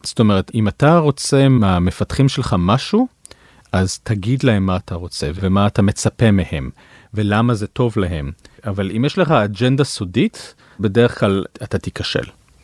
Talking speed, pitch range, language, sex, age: 150 wpm, 105-135 Hz, Hebrew, male, 40-59